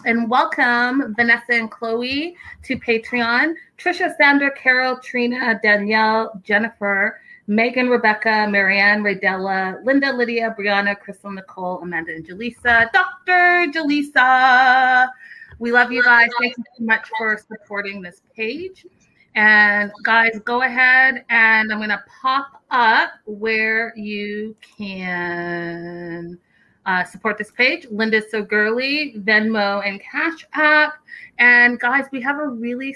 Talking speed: 125 wpm